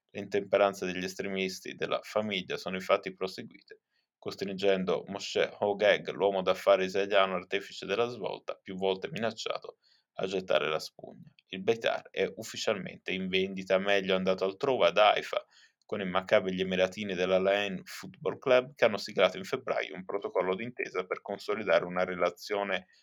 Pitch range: 95-105 Hz